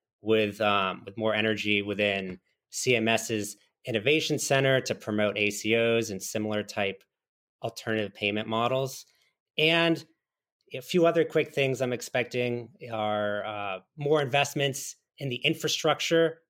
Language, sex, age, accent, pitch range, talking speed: English, male, 30-49, American, 105-140 Hz, 120 wpm